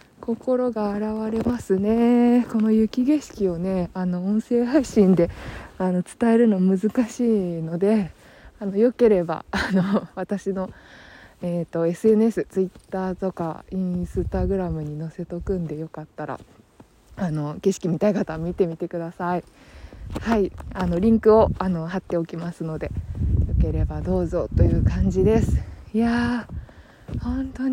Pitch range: 160-225 Hz